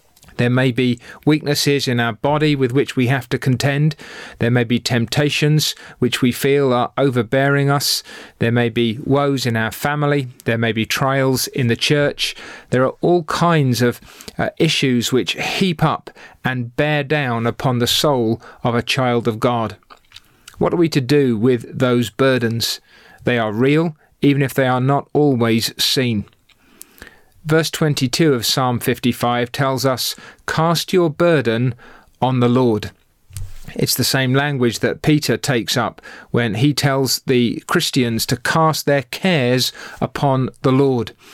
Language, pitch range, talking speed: English, 120-150 Hz, 160 wpm